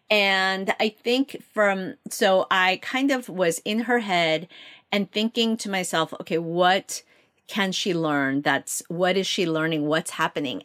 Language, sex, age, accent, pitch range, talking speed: English, female, 40-59, American, 155-205 Hz, 160 wpm